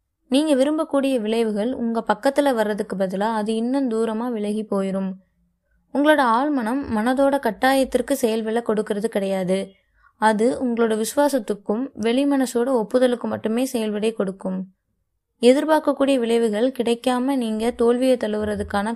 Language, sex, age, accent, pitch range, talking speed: Tamil, female, 20-39, native, 210-255 Hz, 100 wpm